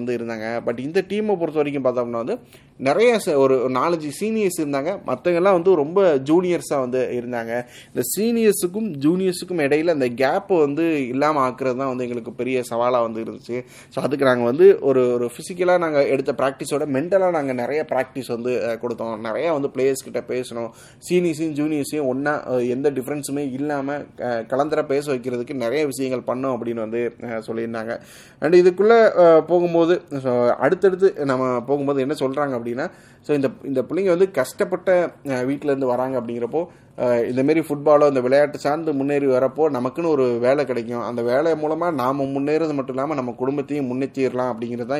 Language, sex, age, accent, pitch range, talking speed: Tamil, male, 20-39, native, 125-155 Hz, 45 wpm